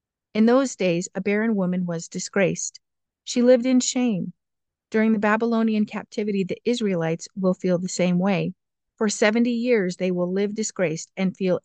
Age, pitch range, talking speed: 50-69, 180-225 Hz, 165 wpm